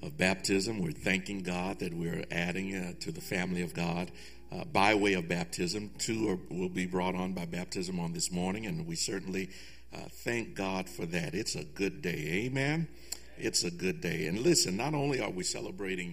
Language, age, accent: English, 50-69, American